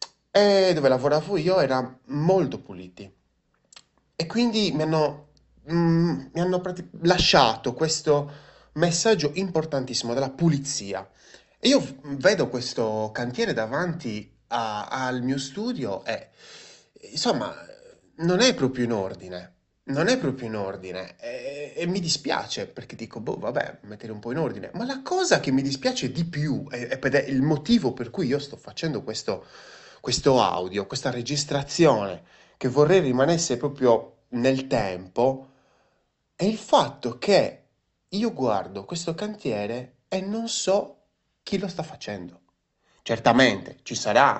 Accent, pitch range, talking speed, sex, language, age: native, 115-170 Hz, 140 wpm, male, Italian, 30-49